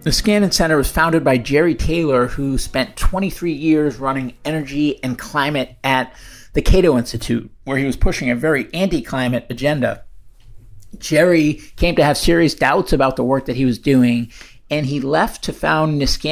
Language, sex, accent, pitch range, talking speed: English, male, American, 130-160 Hz, 175 wpm